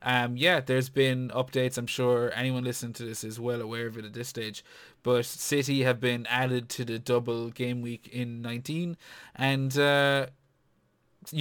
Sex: male